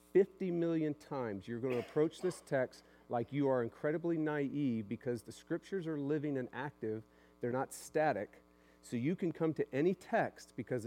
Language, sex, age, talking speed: English, male, 50-69, 175 wpm